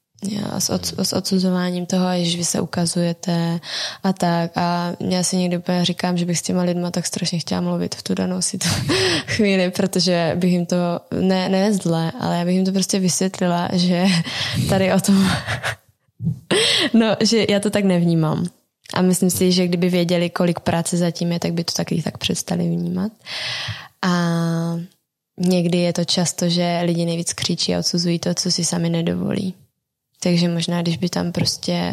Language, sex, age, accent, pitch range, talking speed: Czech, female, 20-39, native, 170-180 Hz, 175 wpm